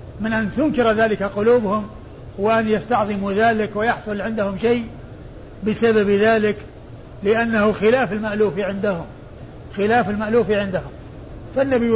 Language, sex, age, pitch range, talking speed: Arabic, male, 50-69, 205-235 Hz, 105 wpm